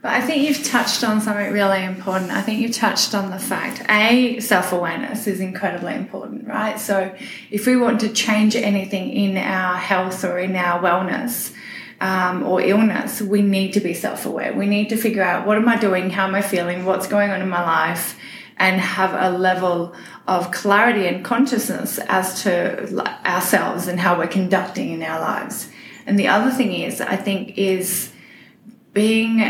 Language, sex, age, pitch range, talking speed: English, female, 20-39, 190-225 Hz, 185 wpm